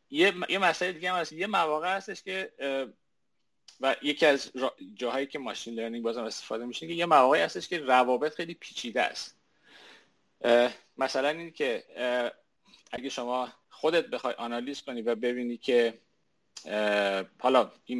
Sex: male